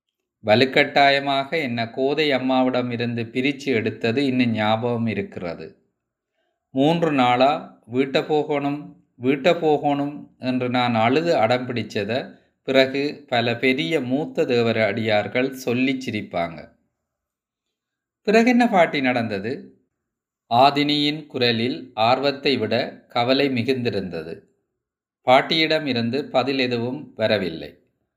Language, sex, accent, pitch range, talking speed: Tamil, male, native, 120-145 Hz, 85 wpm